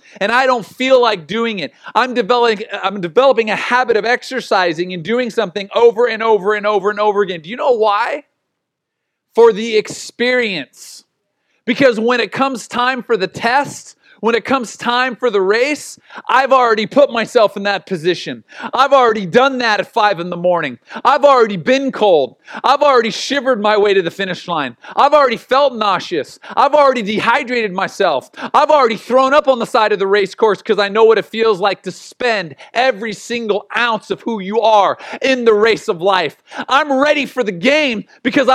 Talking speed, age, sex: 190 wpm, 40-59, male